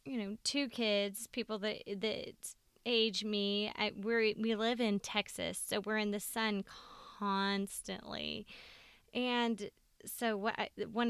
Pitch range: 185-215 Hz